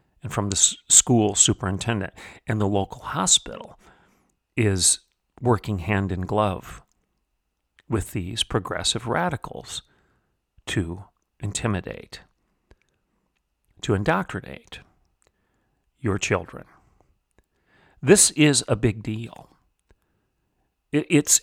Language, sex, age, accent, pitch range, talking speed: English, male, 40-59, American, 95-125 Hz, 80 wpm